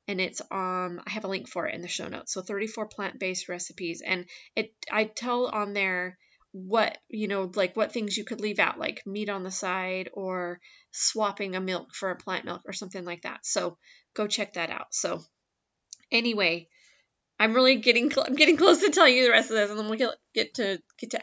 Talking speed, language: 225 wpm, English